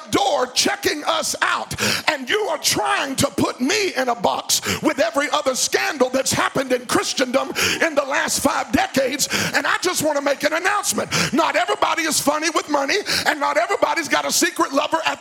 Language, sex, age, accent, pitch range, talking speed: English, male, 50-69, American, 270-380 Hz, 195 wpm